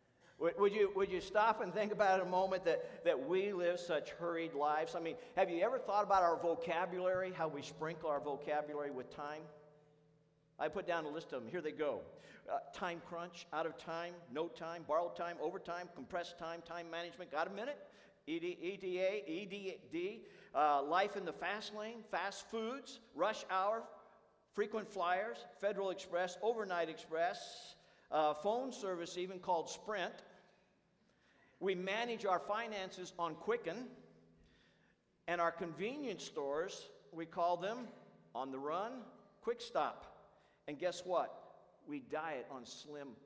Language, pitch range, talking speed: English, 165-210 Hz, 155 wpm